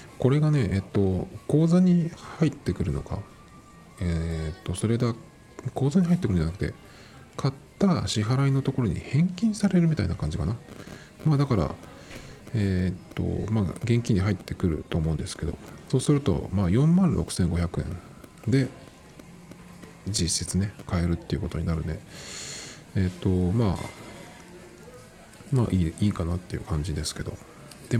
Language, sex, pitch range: Japanese, male, 85-125 Hz